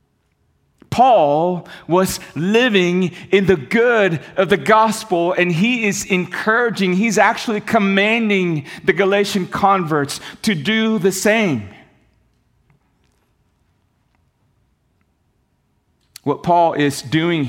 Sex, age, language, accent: male, 40-59, English, American